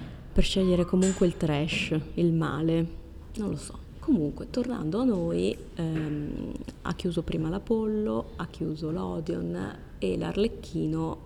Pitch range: 150-175 Hz